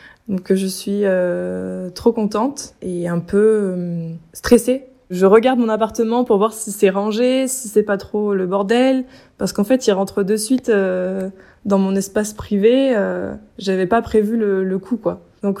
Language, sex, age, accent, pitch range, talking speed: French, female, 20-39, French, 185-215 Hz, 180 wpm